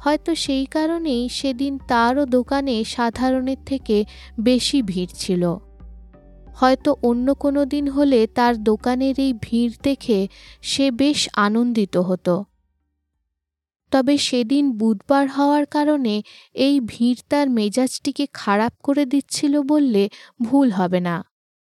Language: Bengali